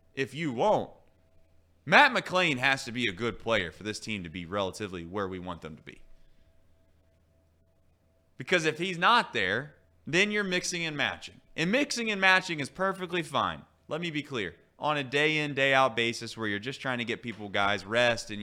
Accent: American